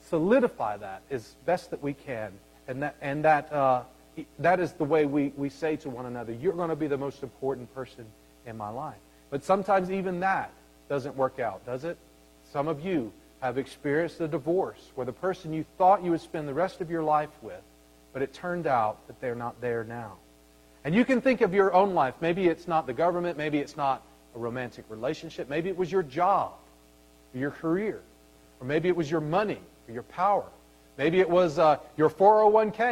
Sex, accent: male, American